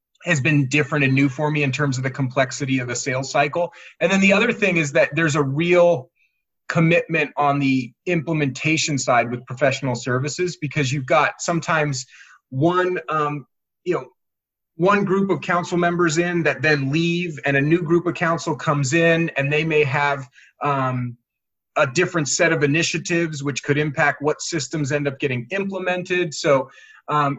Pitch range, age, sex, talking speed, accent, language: 135-165 Hz, 30-49, male, 175 wpm, American, English